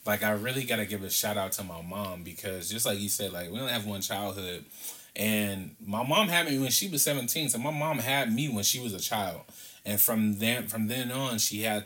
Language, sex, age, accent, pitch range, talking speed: English, male, 20-39, American, 100-120 Hz, 250 wpm